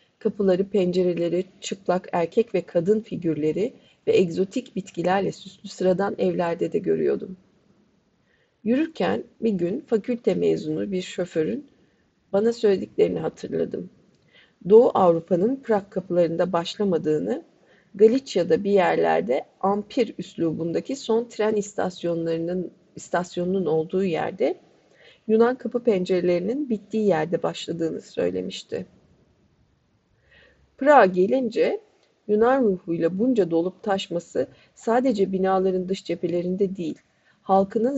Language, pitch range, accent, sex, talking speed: Turkish, 180-225 Hz, native, female, 95 wpm